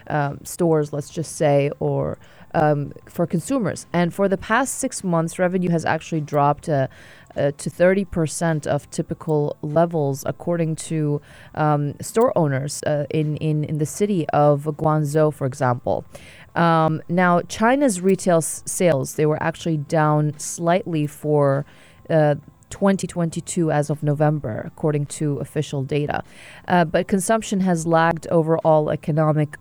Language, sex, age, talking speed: English, female, 30-49, 140 wpm